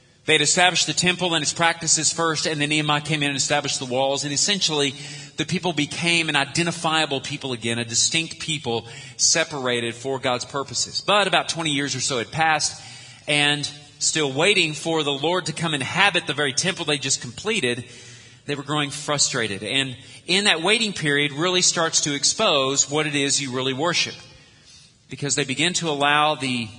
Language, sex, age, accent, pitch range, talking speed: English, male, 40-59, American, 125-160 Hz, 185 wpm